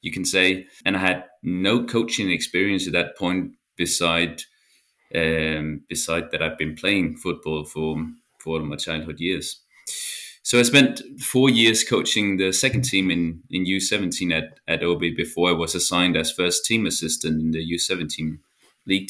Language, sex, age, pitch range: English, male, 30-49, 85-100 Hz